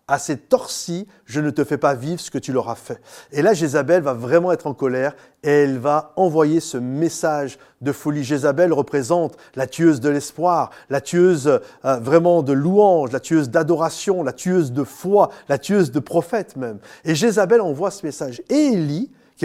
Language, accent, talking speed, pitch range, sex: French, French, 195 wpm, 135-175 Hz, male